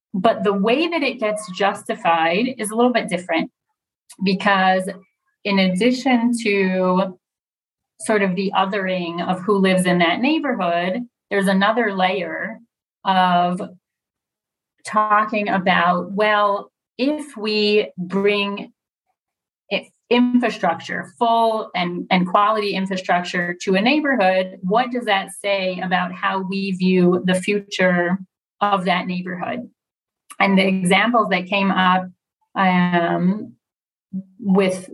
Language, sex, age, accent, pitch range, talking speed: English, female, 30-49, American, 185-210 Hz, 115 wpm